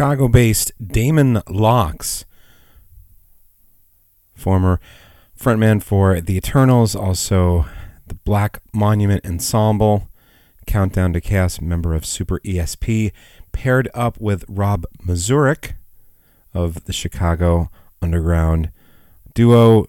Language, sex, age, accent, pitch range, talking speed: English, male, 30-49, American, 85-105 Hz, 90 wpm